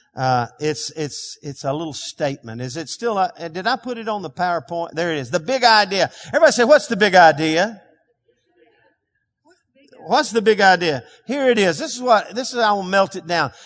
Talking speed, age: 205 wpm, 50-69